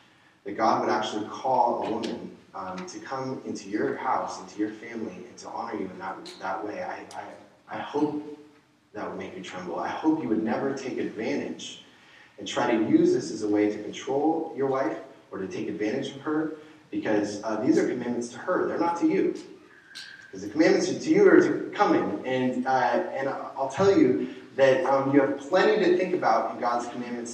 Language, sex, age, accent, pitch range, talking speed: English, male, 30-49, American, 110-180 Hz, 205 wpm